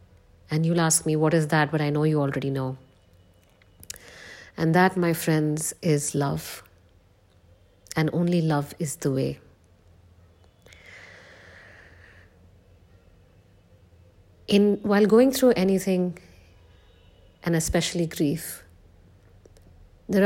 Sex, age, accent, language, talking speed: female, 50-69, Indian, English, 100 wpm